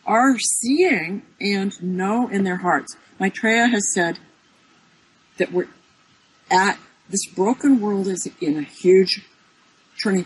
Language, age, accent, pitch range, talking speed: English, 60-79, American, 175-245 Hz, 125 wpm